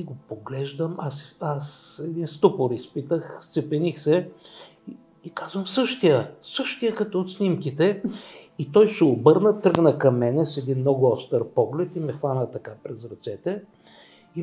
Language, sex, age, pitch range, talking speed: Bulgarian, male, 60-79, 130-180 Hz, 155 wpm